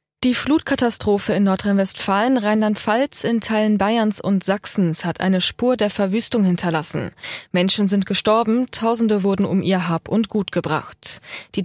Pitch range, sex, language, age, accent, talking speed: 185-225 Hz, female, German, 20-39, German, 145 wpm